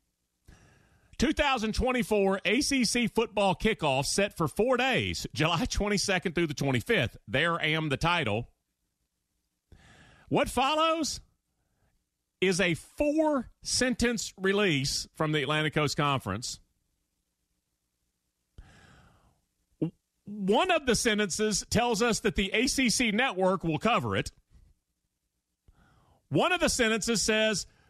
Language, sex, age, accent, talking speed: English, male, 40-59, American, 100 wpm